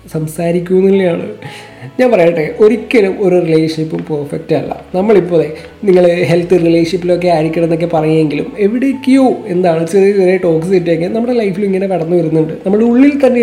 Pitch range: 170-210 Hz